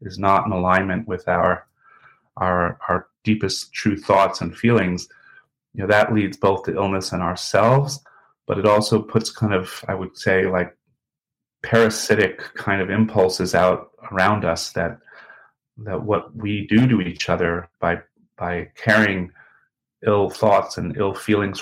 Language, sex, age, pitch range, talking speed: English, male, 30-49, 90-105 Hz, 155 wpm